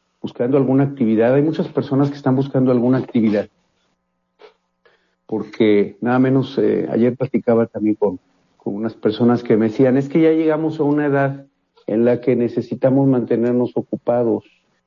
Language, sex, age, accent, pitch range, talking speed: Spanish, male, 50-69, Mexican, 115-155 Hz, 155 wpm